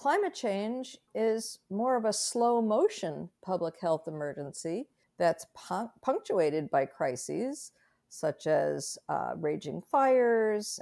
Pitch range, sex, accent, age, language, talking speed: 175-235 Hz, female, American, 50-69, English, 110 wpm